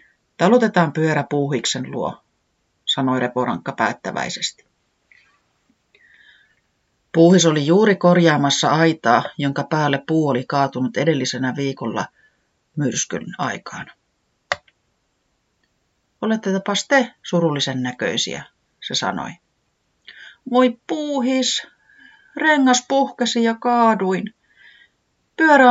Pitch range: 140-235 Hz